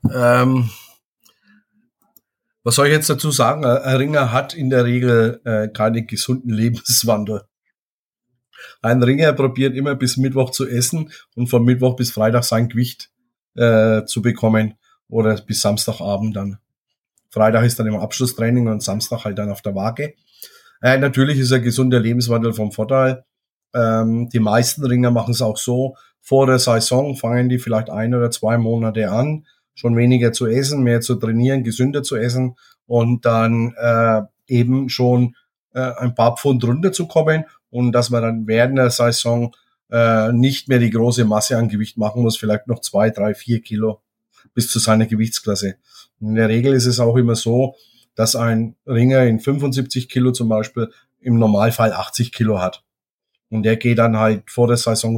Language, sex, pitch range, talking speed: German, male, 115-130 Hz, 165 wpm